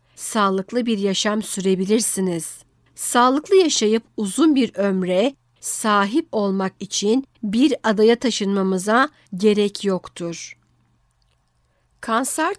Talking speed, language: 85 wpm, Turkish